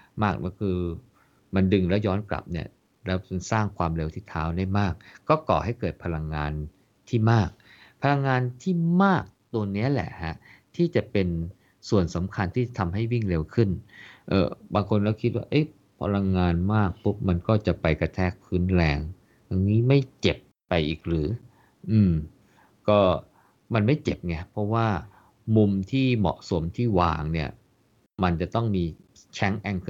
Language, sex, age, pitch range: Thai, male, 50-69, 85-110 Hz